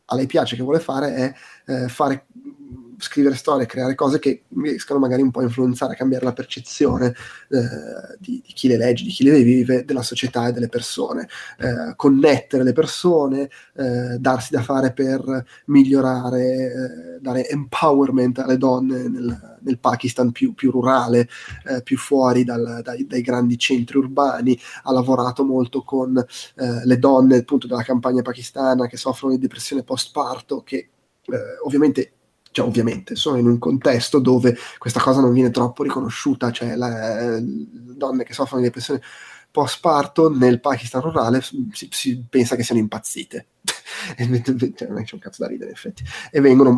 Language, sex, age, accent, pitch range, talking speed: Italian, male, 20-39, native, 125-135 Hz, 170 wpm